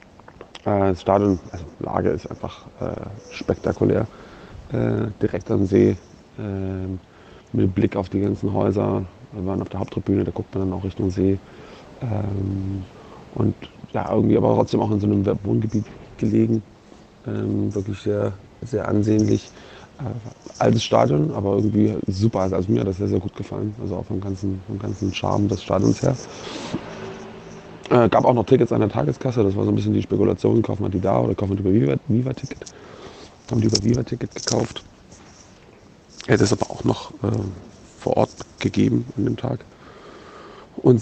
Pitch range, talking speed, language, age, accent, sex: 95-110 Hz, 165 wpm, German, 30-49, German, male